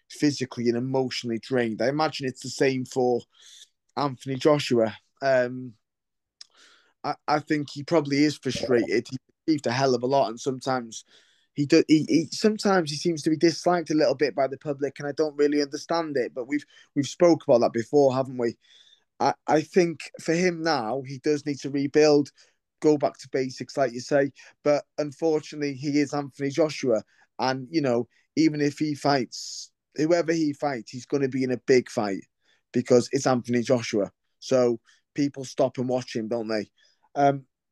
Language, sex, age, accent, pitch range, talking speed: English, male, 20-39, British, 125-155 Hz, 185 wpm